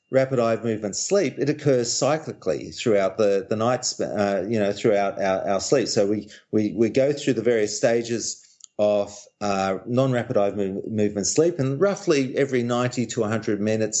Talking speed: 185 wpm